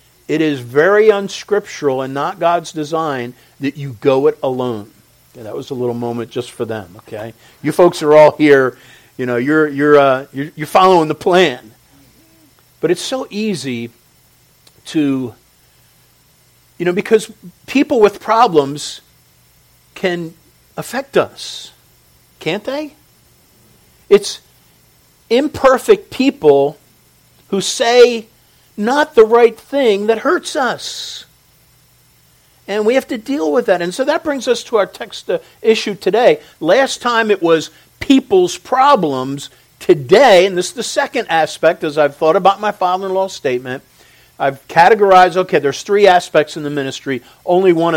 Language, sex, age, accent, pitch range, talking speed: English, male, 50-69, American, 135-210 Hz, 145 wpm